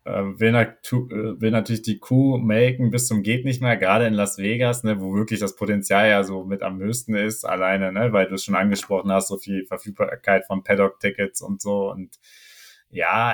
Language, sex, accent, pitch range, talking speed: German, male, German, 100-130 Hz, 195 wpm